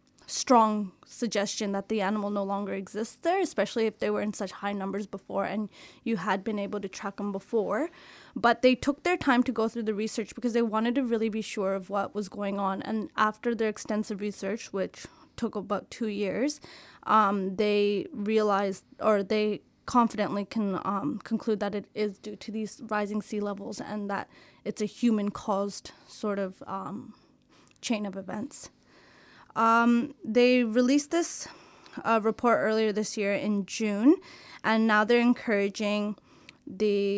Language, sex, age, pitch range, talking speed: English, female, 20-39, 205-235 Hz, 170 wpm